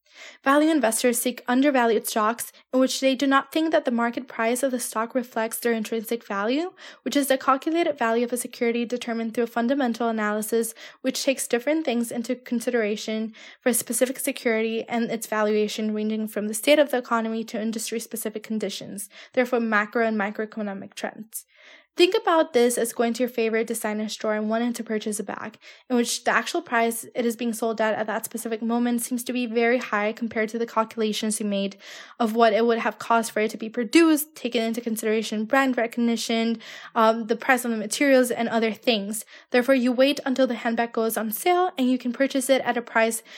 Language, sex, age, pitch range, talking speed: English, female, 10-29, 225-255 Hz, 200 wpm